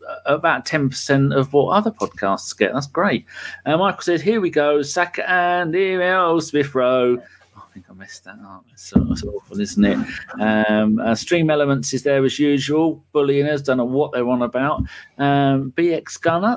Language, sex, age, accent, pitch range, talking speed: English, male, 40-59, British, 120-165 Hz, 195 wpm